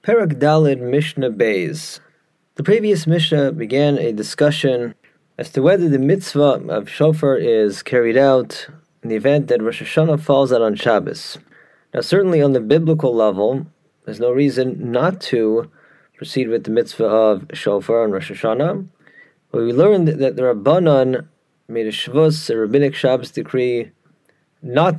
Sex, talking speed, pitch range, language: male, 150 wpm, 120-155 Hz, English